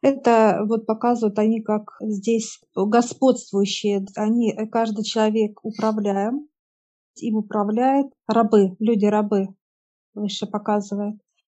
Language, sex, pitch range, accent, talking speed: Russian, female, 210-235 Hz, native, 90 wpm